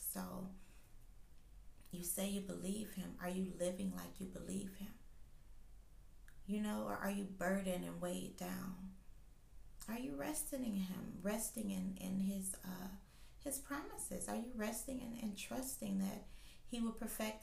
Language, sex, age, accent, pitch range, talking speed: English, female, 30-49, American, 190-240 Hz, 150 wpm